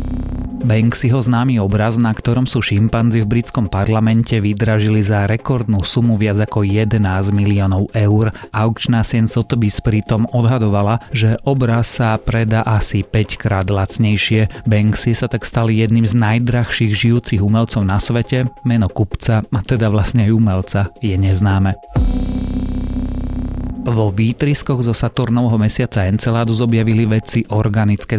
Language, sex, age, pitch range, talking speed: Slovak, male, 30-49, 100-120 Hz, 130 wpm